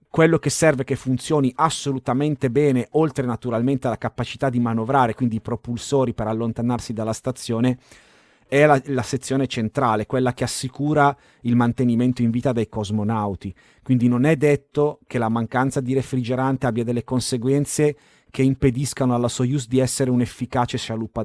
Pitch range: 115-140 Hz